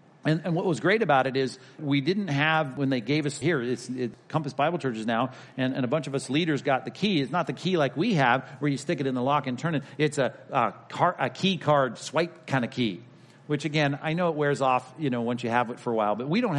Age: 40-59